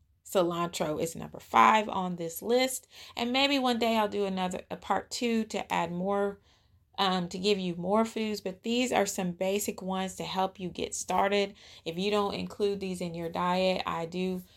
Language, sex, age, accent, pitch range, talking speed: English, female, 30-49, American, 170-205 Hz, 195 wpm